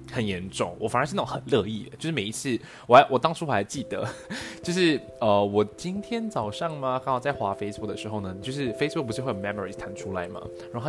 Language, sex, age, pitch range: Chinese, male, 20-39, 100-130 Hz